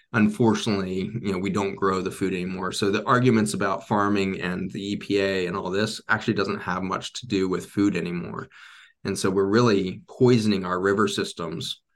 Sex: male